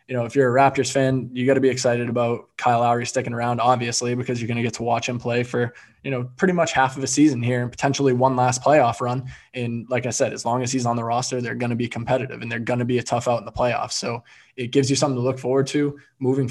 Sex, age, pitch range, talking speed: male, 20-39, 120-135 Hz, 290 wpm